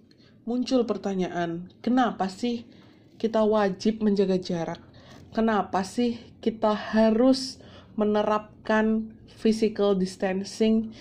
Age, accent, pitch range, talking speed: 20-39, native, 185-225 Hz, 80 wpm